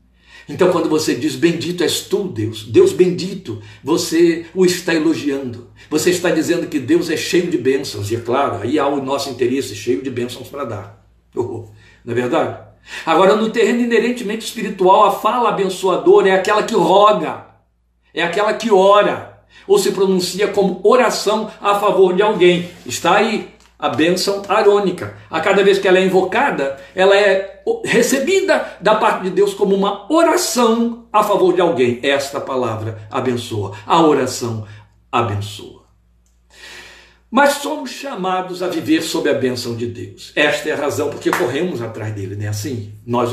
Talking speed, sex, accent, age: 165 wpm, male, Brazilian, 60-79